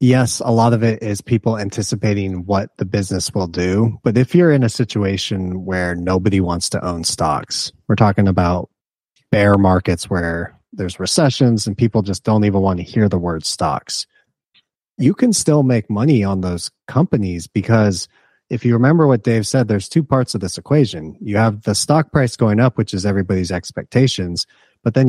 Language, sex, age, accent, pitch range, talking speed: English, male, 30-49, American, 100-130 Hz, 185 wpm